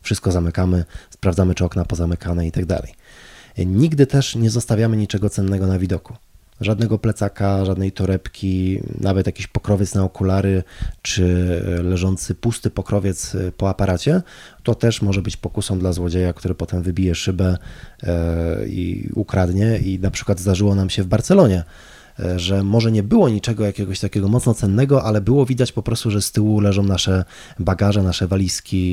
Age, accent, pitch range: 20-39, native, 90-105 Hz